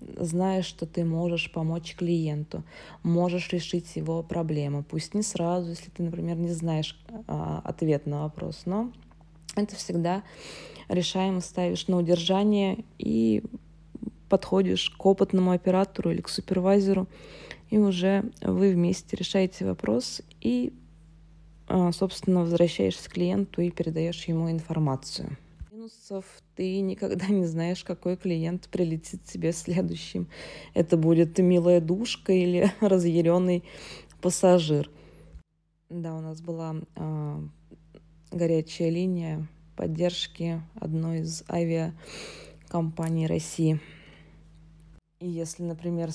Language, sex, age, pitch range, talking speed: Russian, female, 20-39, 160-185 Hz, 110 wpm